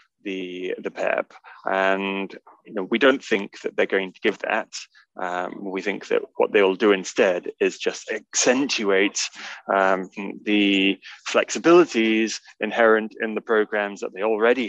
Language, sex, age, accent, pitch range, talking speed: English, male, 20-39, British, 95-115 Hz, 150 wpm